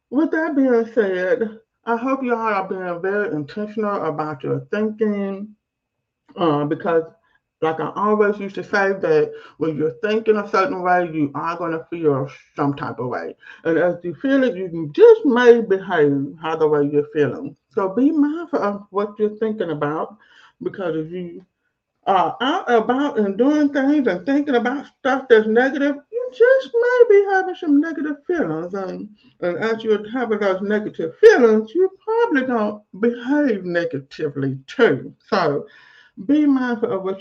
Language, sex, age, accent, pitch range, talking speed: English, male, 50-69, American, 160-255 Hz, 165 wpm